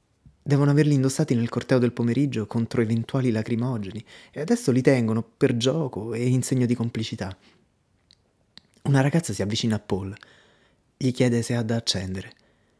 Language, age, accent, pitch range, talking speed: Italian, 20-39, native, 105-135 Hz, 155 wpm